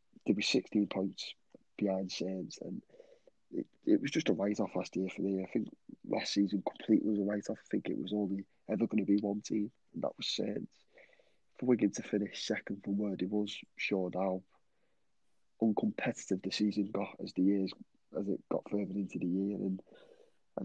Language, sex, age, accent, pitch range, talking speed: English, male, 20-39, British, 95-110 Hz, 200 wpm